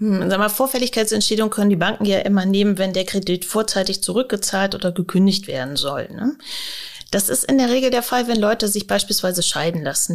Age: 30-49